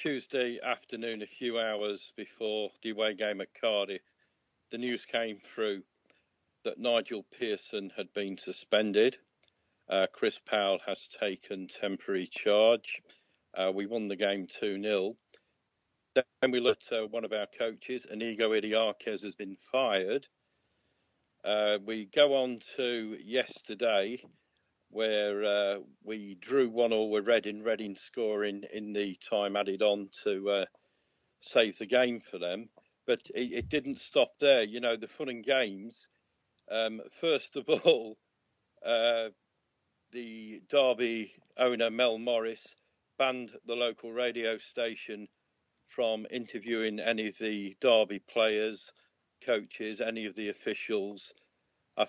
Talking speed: 135 wpm